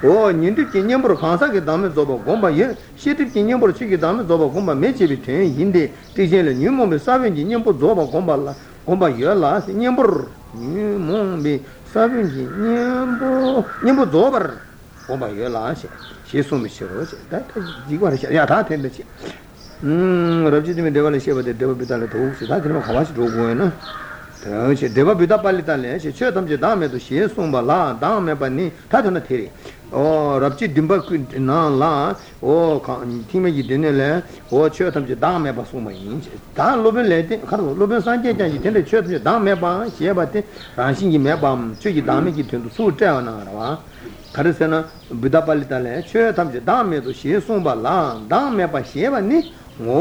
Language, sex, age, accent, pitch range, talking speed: Italian, male, 50-69, Indian, 135-205 Hz, 110 wpm